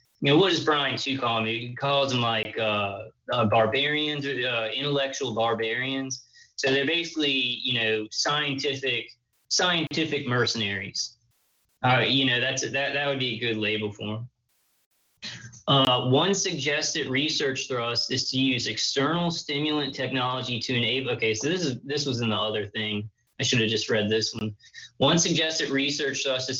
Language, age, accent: English, 20-39, American